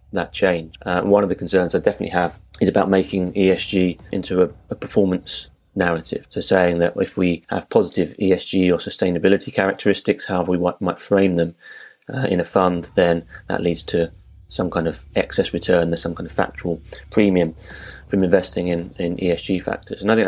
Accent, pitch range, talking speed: British, 85-100 Hz, 190 wpm